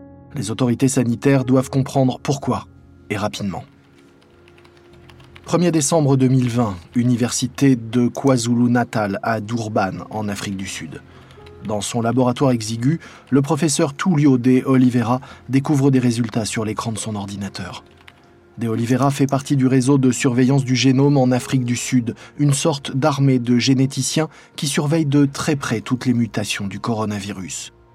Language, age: French, 20-39